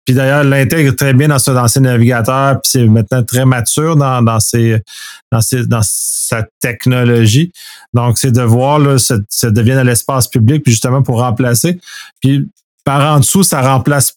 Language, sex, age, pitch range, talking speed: French, male, 30-49, 125-150 Hz, 190 wpm